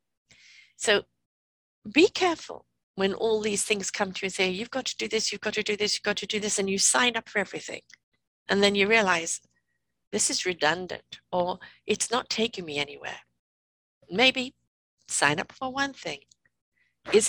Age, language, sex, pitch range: 60-79, English, female, 140-230 Hz